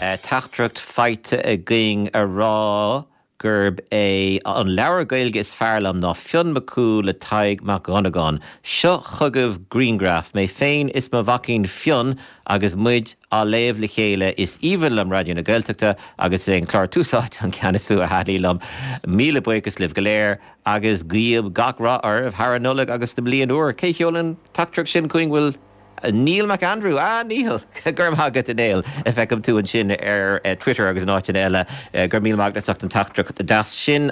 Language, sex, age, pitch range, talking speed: German, male, 50-69, 100-125 Hz, 160 wpm